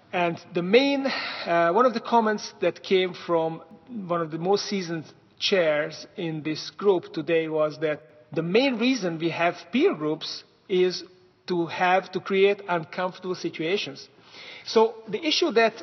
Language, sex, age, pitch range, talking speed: English, male, 40-59, 165-195 Hz, 155 wpm